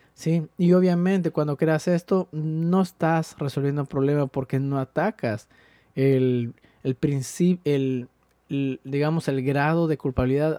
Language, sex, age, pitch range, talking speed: Spanish, male, 30-49, 135-160 Hz, 135 wpm